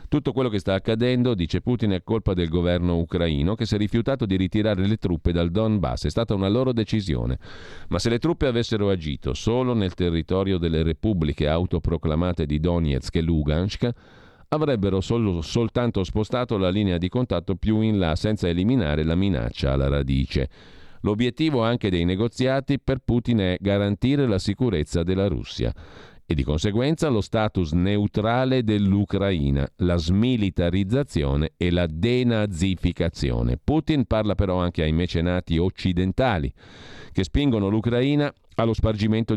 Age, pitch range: 50-69, 85-115 Hz